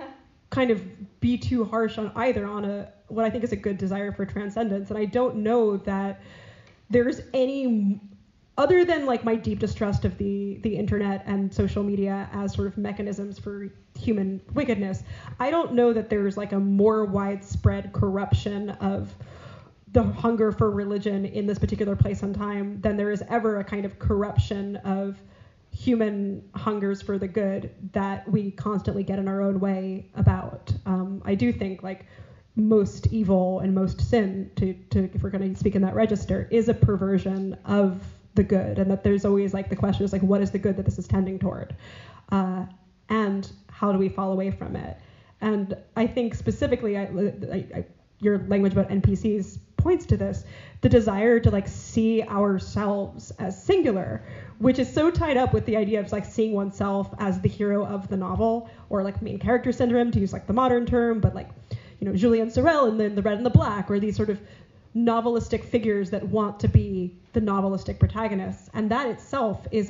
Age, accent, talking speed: 10-29, American, 190 wpm